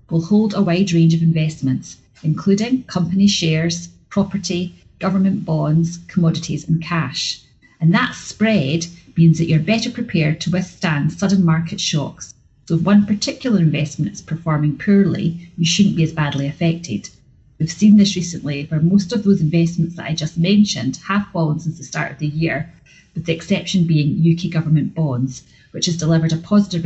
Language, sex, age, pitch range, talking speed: English, female, 30-49, 155-185 Hz, 170 wpm